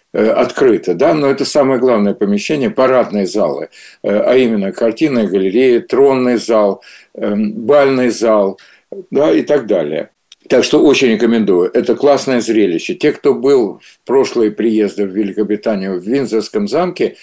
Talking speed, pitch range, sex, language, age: 135 wpm, 110-145 Hz, male, Russian, 60-79